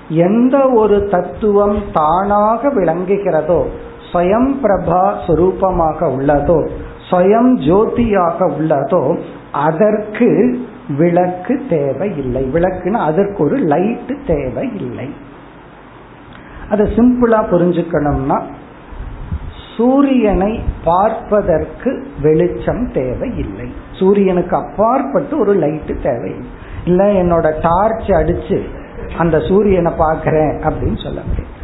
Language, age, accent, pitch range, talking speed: Tamil, 50-69, native, 165-225 Hz, 70 wpm